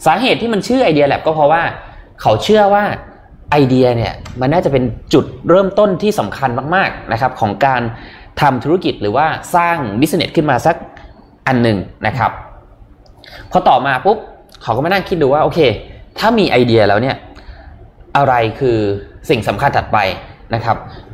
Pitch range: 110-145 Hz